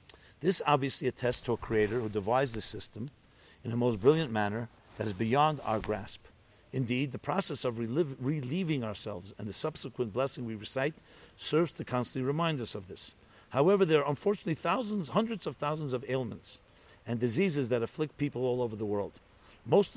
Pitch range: 110-140 Hz